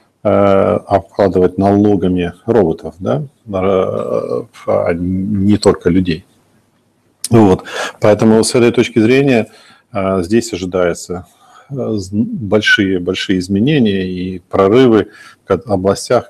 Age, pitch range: 50-69, 90-105 Hz